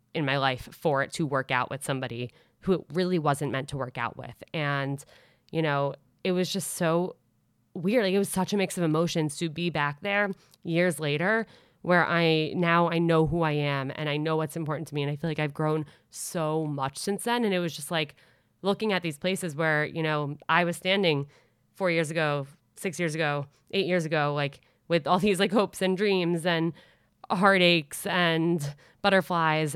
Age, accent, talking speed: 20-39, American, 205 wpm